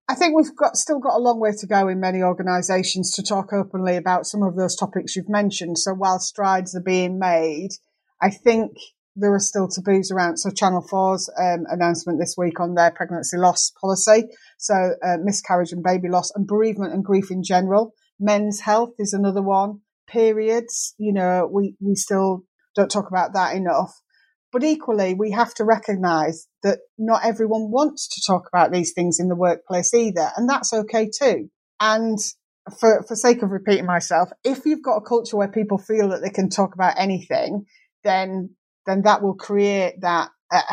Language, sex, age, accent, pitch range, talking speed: English, female, 30-49, British, 180-220 Hz, 190 wpm